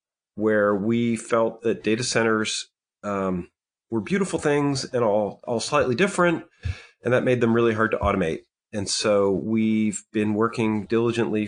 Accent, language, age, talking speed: American, English, 30-49, 150 wpm